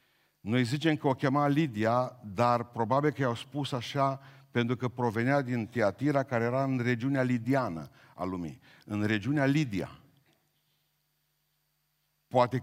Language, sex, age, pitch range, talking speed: Romanian, male, 50-69, 115-145 Hz, 135 wpm